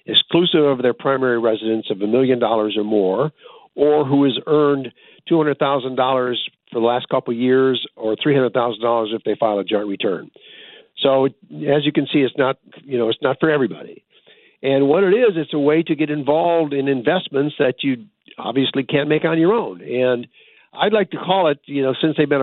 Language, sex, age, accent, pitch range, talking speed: English, male, 60-79, American, 130-170 Hz, 200 wpm